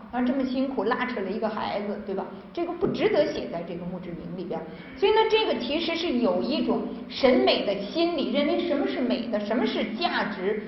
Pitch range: 210-255 Hz